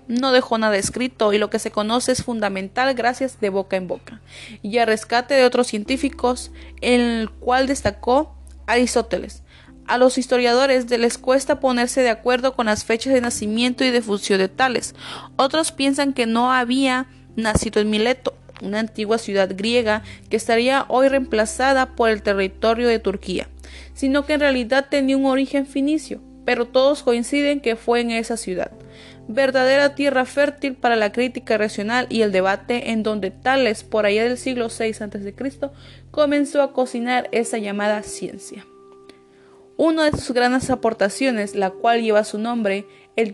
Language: Spanish